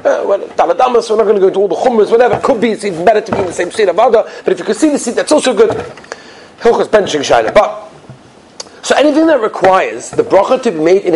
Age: 40-59